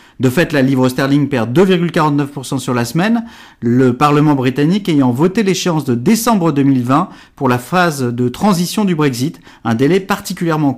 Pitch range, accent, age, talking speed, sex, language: 135-180 Hz, French, 40-59, 160 wpm, male, French